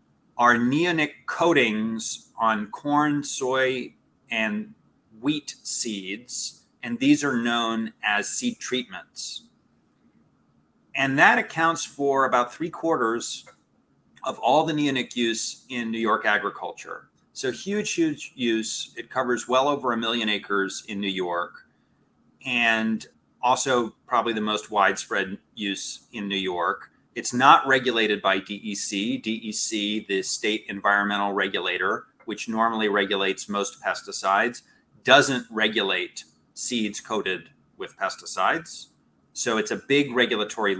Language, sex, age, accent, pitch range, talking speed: English, male, 30-49, American, 100-140 Hz, 120 wpm